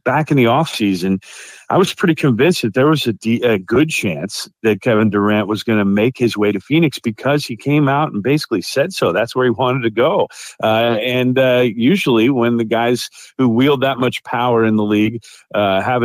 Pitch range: 110-140 Hz